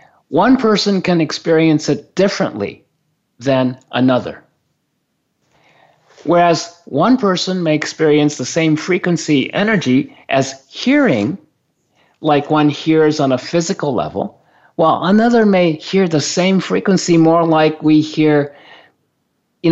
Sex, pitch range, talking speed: male, 135-175 Hz, 115 wpm